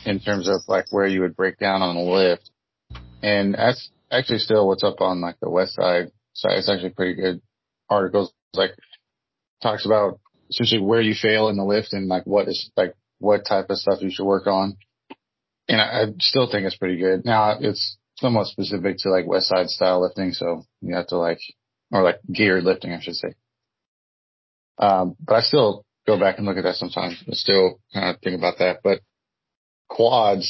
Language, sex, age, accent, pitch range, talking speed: English, male, 30-49, American, 95-110 Hz, 200 wpm